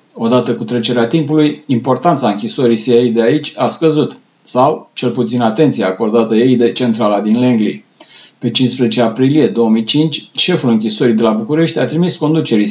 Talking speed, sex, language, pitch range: 155 wpm, male, Romanian, 120-155 Hz